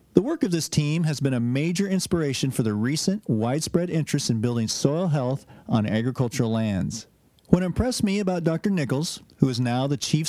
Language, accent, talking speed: English, American, 190 wpm